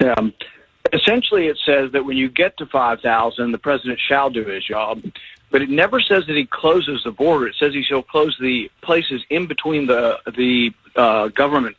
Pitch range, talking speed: 125-155 Hz, 195 wpm